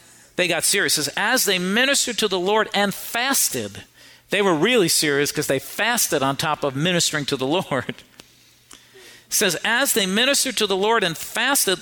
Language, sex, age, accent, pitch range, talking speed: English, male, 50-69, American, 150-210 Hz, 180 wpm